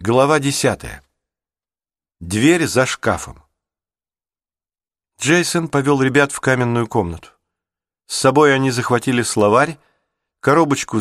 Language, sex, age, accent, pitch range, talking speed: Russian, male, 50-69, native, 95-140 Hz, 95 wpm